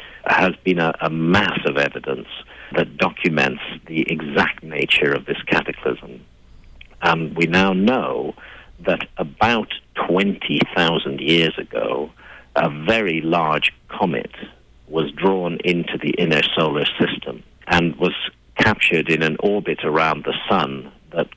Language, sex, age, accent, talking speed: English, male, 50-69, British, 125 wpm